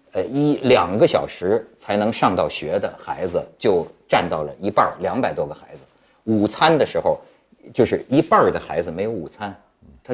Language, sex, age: Chinese, male, 50-69